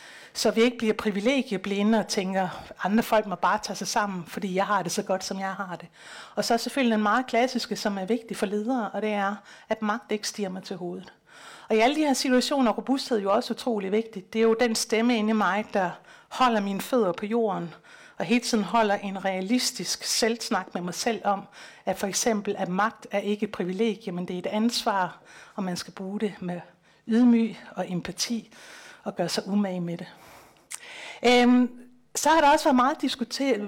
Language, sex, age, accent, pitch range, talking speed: Danish, female, 60-79, native, 200-245 Hz, 220 wpm